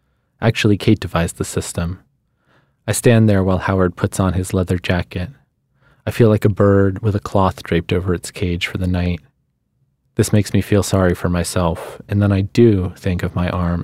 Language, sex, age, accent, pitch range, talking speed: English, male, 20-39, American, 90-120 Hz, 195 wpm